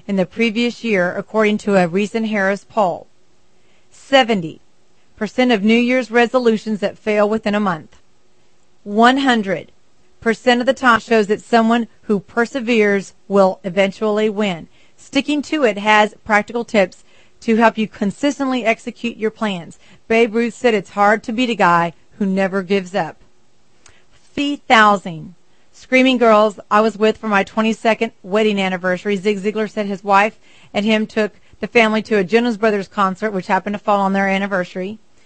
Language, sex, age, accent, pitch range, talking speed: English, female, 40-59, American, 200-235 Hz, 160 wpm